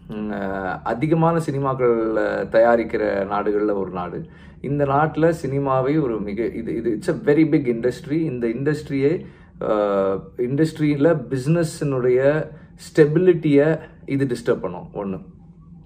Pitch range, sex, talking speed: 95-160 Hz, male, 100 wpm